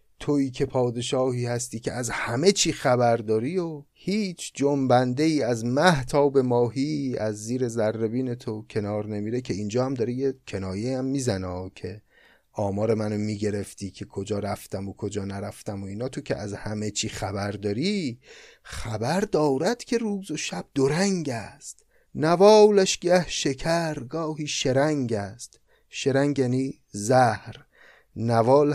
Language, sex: Persian, male